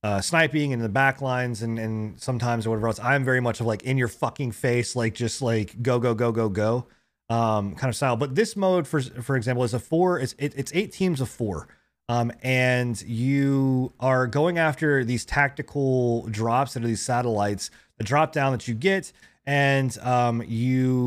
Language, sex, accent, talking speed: English, male, American, 195 wpm